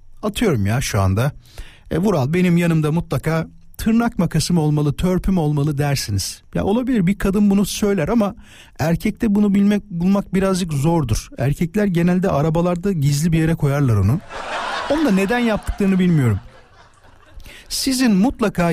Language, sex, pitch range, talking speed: Turkish, male, 120-200 Hz, 140 wpm